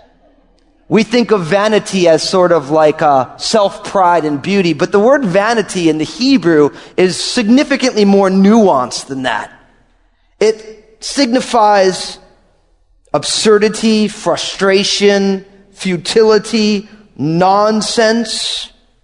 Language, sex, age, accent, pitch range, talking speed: English, male, 30-49, American, 180-240 Hz, 100 wpm